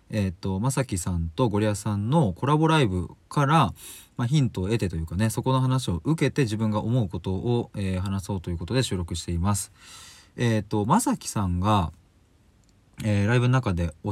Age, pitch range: 20-39, 90-130 Hz